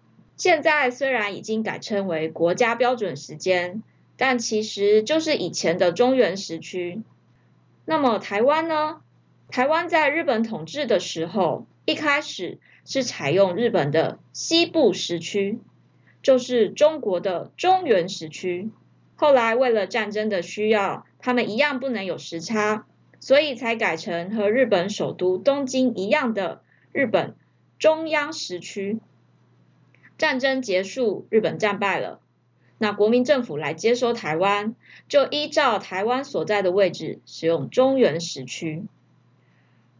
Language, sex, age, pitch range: Chinese, female, 20-39, 185-260 Hz